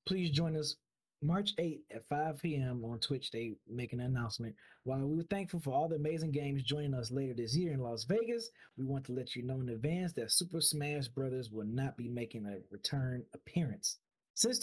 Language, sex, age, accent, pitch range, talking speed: English, male, 20-39, American, 120-165 Hz, 210 wpm